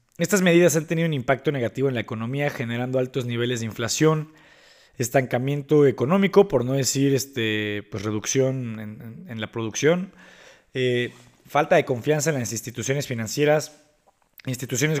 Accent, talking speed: Mexican, 135 wpm